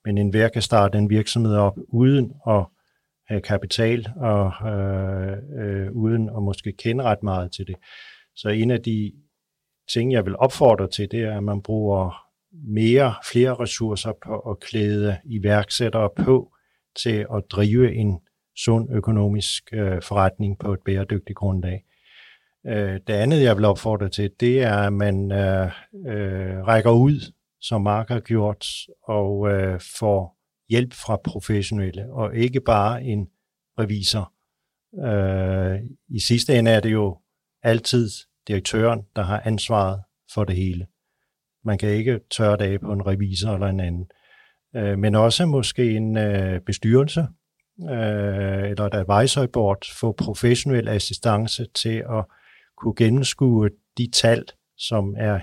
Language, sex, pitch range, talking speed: Danish, male, 100-115 Hz, 145 wpm